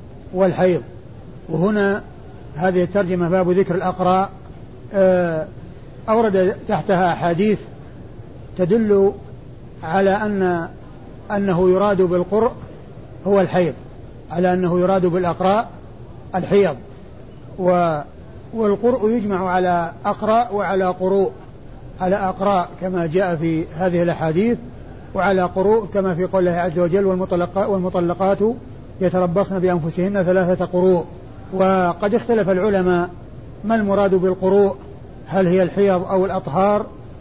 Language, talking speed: Arabic, 95 wpm